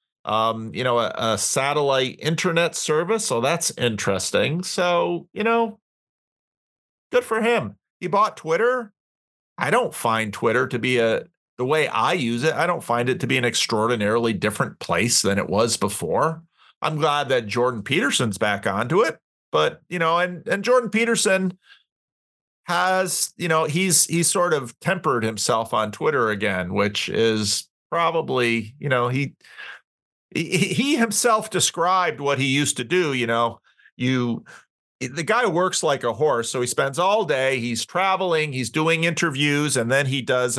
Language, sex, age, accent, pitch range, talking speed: English, male, 40-59, American, 125-180 Hz, 165 wpm